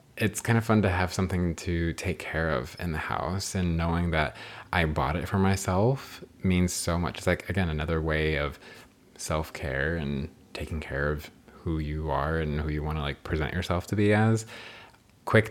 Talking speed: 195 wpm